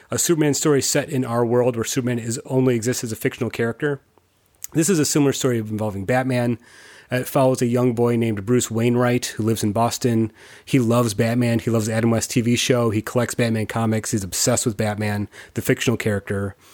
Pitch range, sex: 110-130 Hz, male